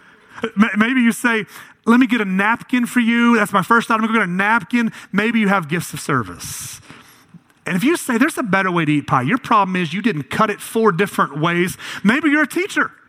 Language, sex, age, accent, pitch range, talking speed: English, male, 30-49, American, 160-250 Hz, 235 wpm